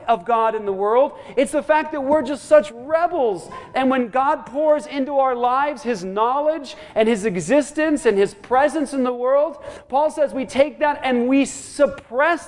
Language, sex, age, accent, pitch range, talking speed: English, male, 40-59, American, 235-290 Hz, 190 wpm